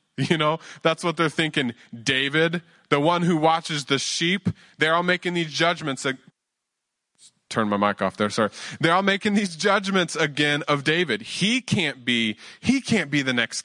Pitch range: 115-165 Hz